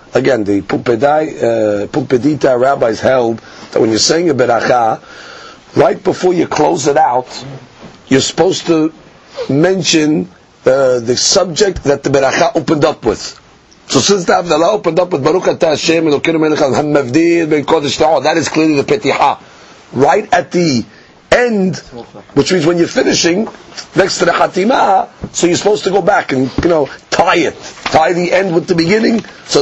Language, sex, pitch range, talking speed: English, male, 140-180 Hz, 155 wpm